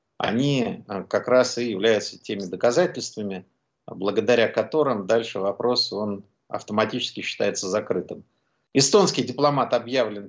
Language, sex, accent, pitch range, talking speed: Russian, male, native, 120-150 Hz, 100 wpm